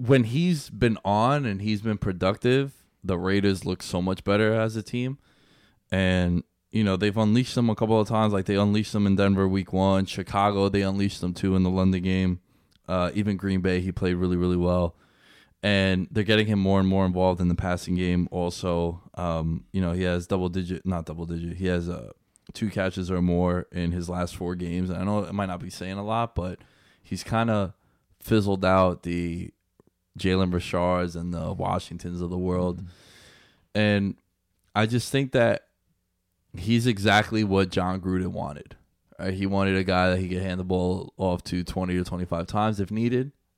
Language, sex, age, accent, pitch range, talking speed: English, male, 20-39, American, 90-110 Hz, 190 wpm